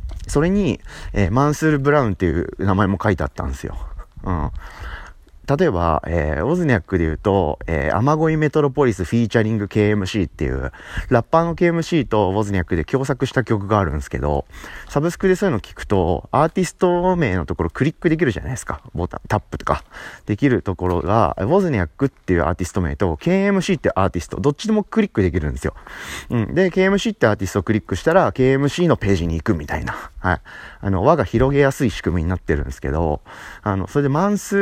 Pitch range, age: 90-145 Hz, 30-49